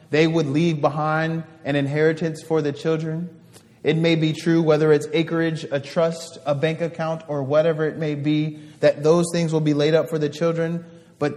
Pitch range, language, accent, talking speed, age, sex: 145-165 Hz, English, American, 195 wpm, 30-49, male